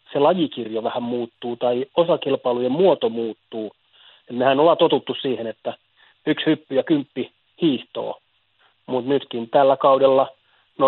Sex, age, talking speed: male, 30-49, 130 wpm